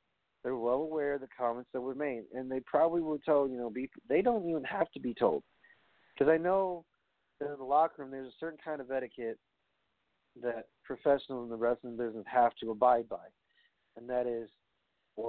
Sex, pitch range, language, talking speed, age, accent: male, 115-155 Hz, English, 205 wpm, 50-69, American